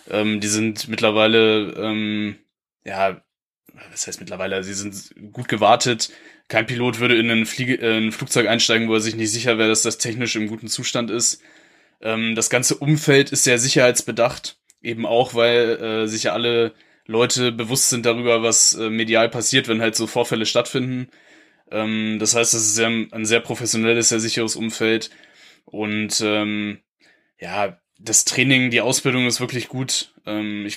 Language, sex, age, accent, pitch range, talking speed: German, male, 10-29, German, 110-125 Hz, 165 wpm